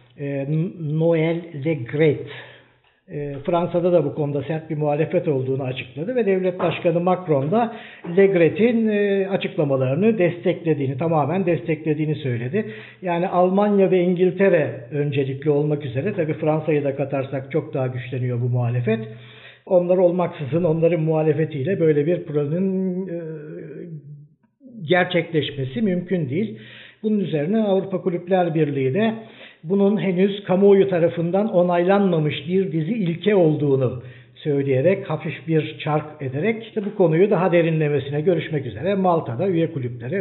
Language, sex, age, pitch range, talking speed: Turkish, male, 60-79, 145-190 Hz, 115 wpm